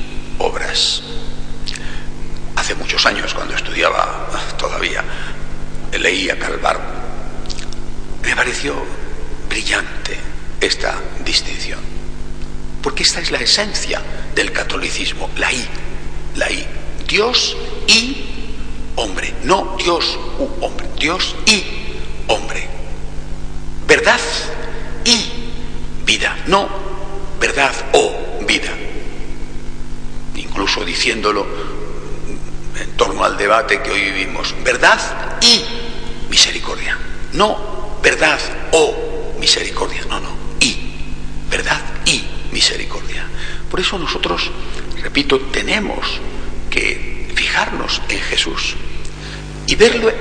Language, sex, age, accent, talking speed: Spanish, male, 60-79, Spanish, 90 wpm